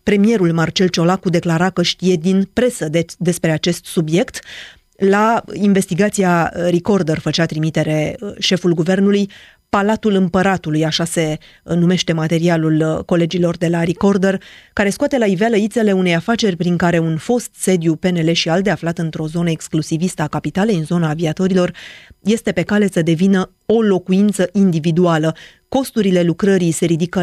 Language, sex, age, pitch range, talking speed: Romanian, female, 30-49, 165-195 Hz, 145 wpm